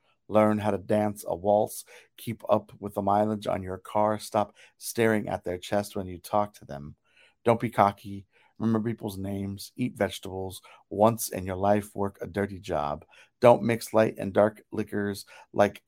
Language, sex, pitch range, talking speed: English, male, 100-110 Hz, 180 wpm